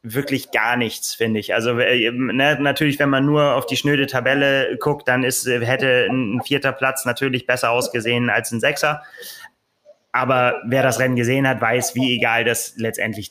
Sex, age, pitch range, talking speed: male, 20-39, 120-140 Hz, 175 wpm